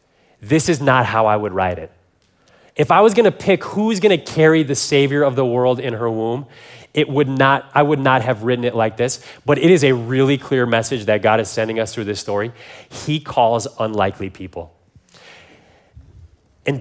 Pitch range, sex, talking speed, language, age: 125-165 Hz, male, 205 wpm, English, 30-49